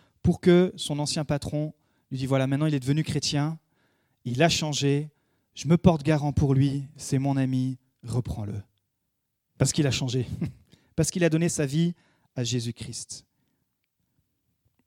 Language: French